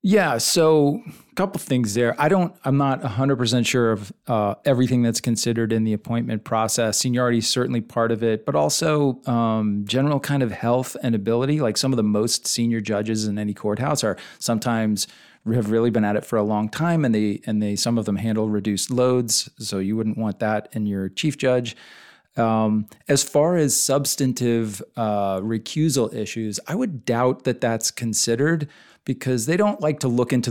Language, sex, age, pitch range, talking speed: English, male, 40-59, 110-135 Hz, 195 wpm